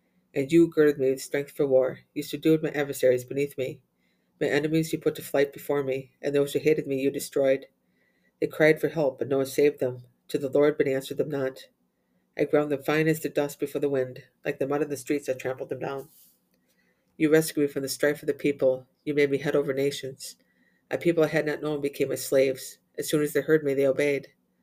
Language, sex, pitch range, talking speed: English, female, 130-150 Hz, 235 wpm